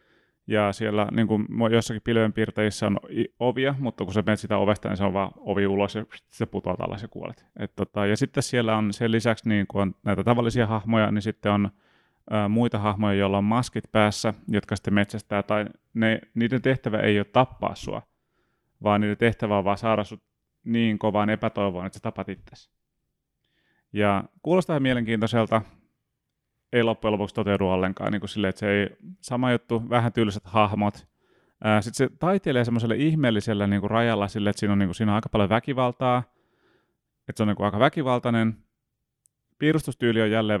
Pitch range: 105-115 Hz